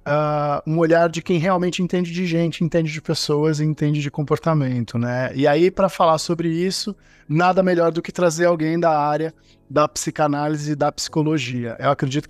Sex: male